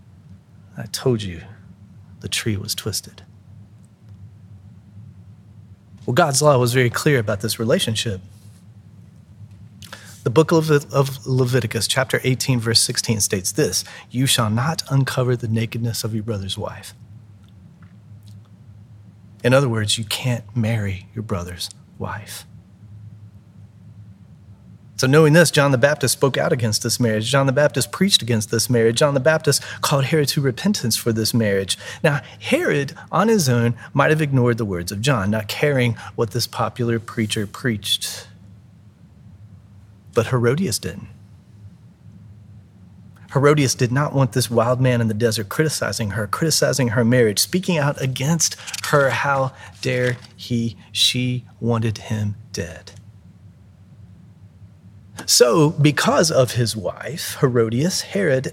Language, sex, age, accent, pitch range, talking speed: English, male, 30-49, American, 100-130 Hz, 130 wpm